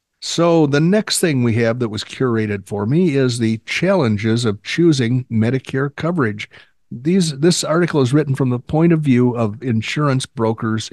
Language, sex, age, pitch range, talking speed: English, male, 50-69, 110-145 Hz, 170 wpm